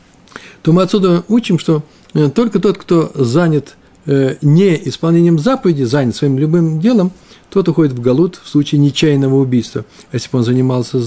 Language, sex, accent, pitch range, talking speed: Russian, male, native, 130-170 Hz, 155 wpm